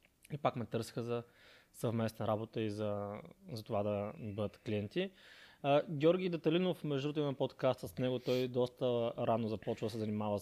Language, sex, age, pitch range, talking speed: Bulgarian, male, 20-39, 110-150 Hz, 165 wpm